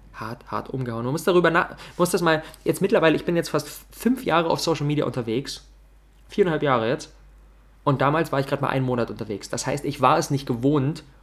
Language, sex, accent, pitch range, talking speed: German, male, German, 125-165 Hz, 225 wpm